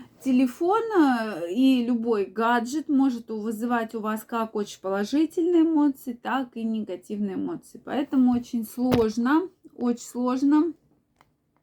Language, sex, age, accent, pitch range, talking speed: Russian, female, 20-39, native, 220-275 Hz, 110 wpm